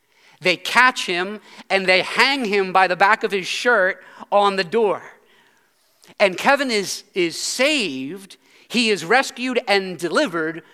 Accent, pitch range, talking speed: American, 180-220 Hz, 145 wpm